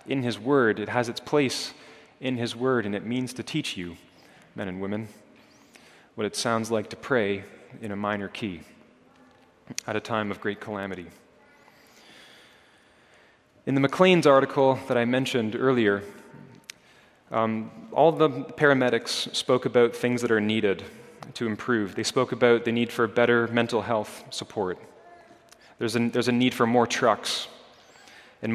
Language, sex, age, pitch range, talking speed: English, male, 30-49, 105-130 Hz, 155 wpm